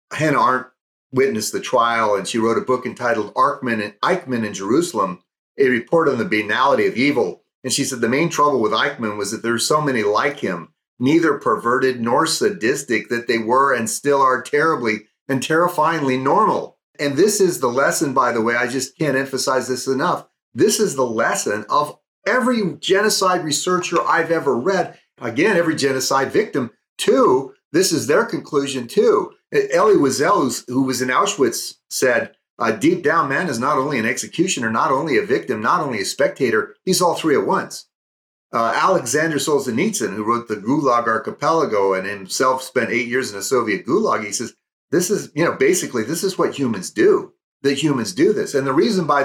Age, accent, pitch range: 40-59, American, 115-180 Hz